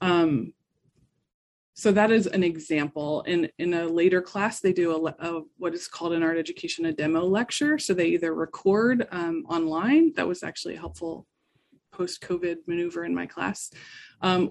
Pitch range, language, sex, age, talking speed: 165-205 Hz, English, female, 20-39, 170 wpm